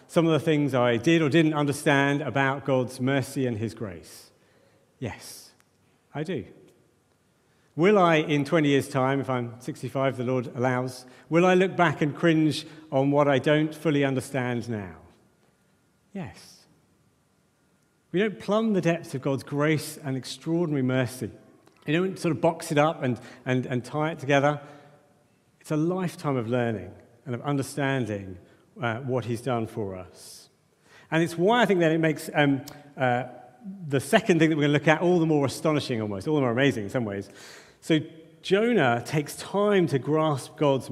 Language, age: English, 50-69